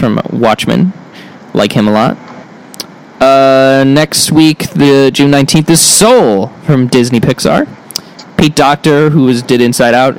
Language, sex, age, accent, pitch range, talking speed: English, male, 20-39, American, 120-160 Hz, 140 wpm